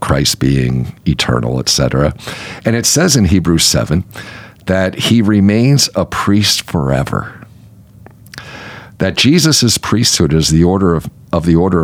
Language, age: English, 50-69